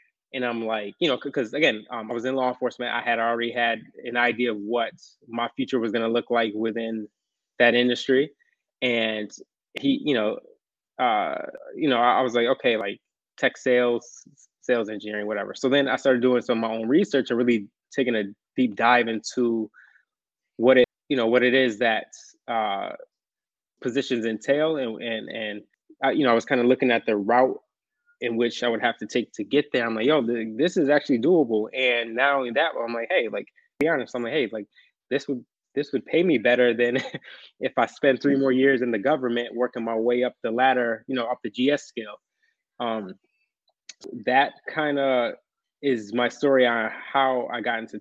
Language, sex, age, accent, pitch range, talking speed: English, male, 20-39, American, 115-130 Hz, 200 wpm